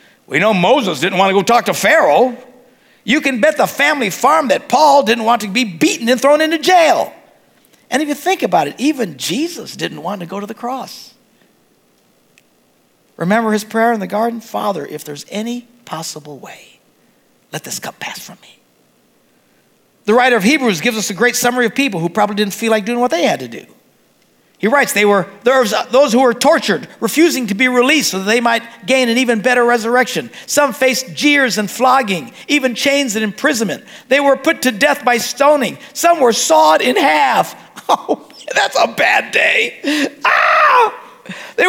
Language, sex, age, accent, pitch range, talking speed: English, male, 60-79, American, 210-280 Hz, 190 wpm